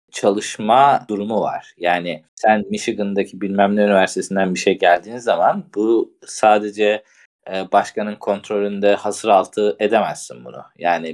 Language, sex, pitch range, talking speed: Turkish, male, 95-120 Hz, 120 wpm